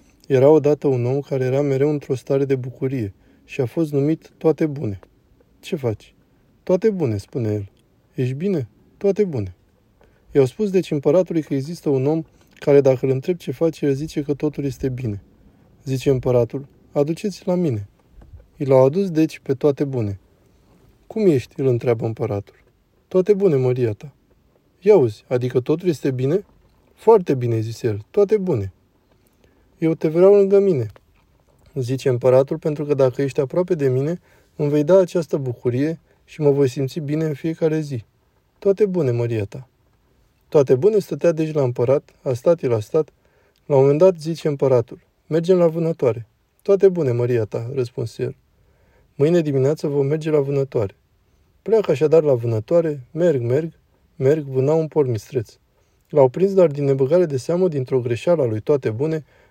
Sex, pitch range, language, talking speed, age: male, 120-160 Hz, Romanian, 165 wpm, 20-39